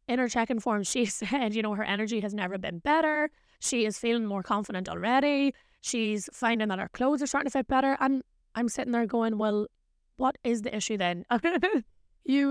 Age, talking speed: 20-39, 205 wpm